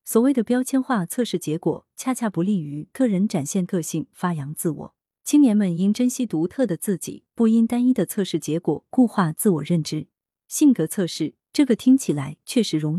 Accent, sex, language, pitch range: native, female, Chinese, 160-230 Hz